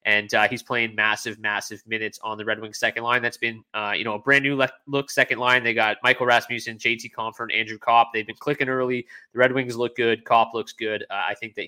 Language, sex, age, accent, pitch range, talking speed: English, male, 20-39, American, 115-135 Hz, 255 wpm